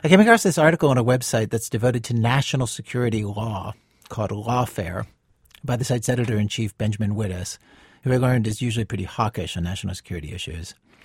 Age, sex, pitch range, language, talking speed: 40-59, male, 110-150 Hz, English, 180 wpm